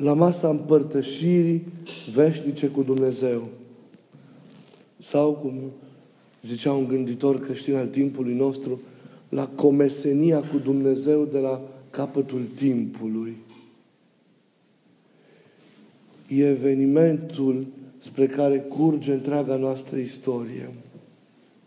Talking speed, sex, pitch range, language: 85 wpm, male, 135-150 Hz, Romanian